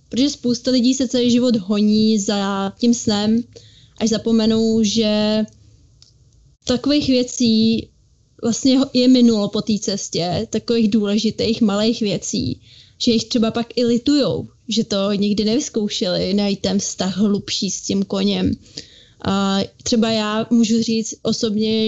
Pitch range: 210-230 Hz